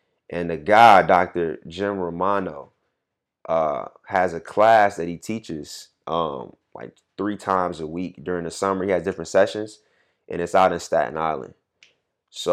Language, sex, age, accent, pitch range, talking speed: English, male, 20-39, American, 85-100 Hz, 160 wpm